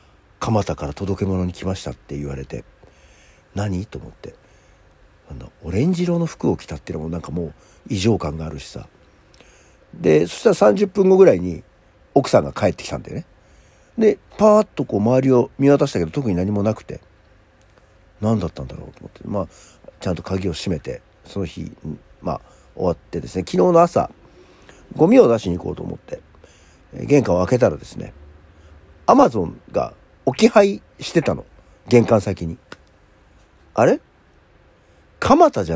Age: 50-69